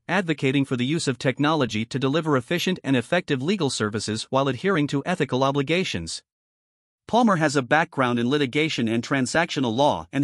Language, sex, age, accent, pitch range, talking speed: English, male, 50-69, American, 125-165 Hz, 165 wpm